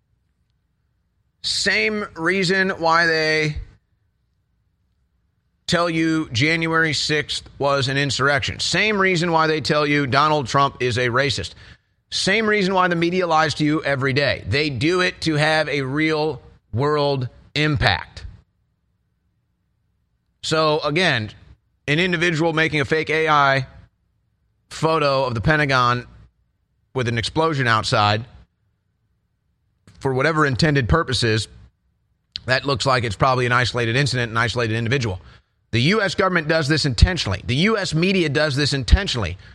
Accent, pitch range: American, 115-165 Hz